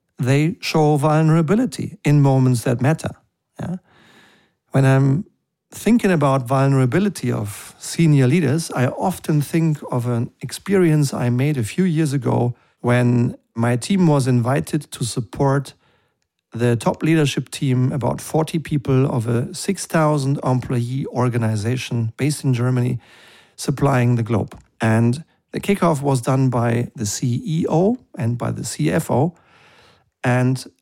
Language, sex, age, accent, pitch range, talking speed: German, male, 50-69, German, 125-155 Hz, 125 wpm